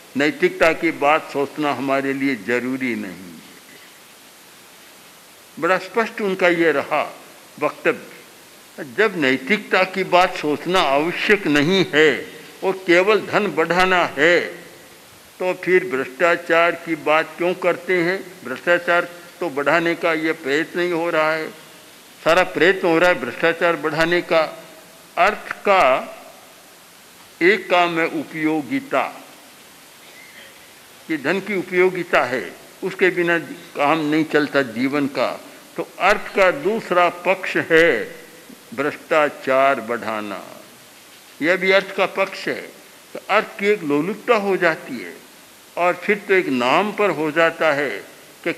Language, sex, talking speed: Hindi, male, 125 wpm